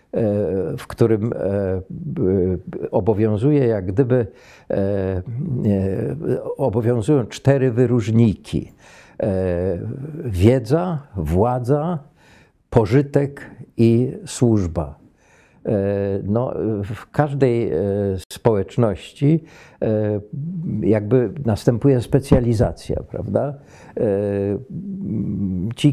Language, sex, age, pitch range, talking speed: Polish, male, 50-69, 95-120 Hz, 50 wpm